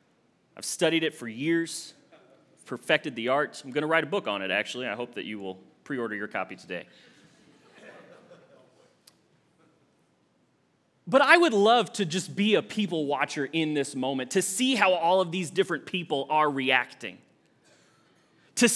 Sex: male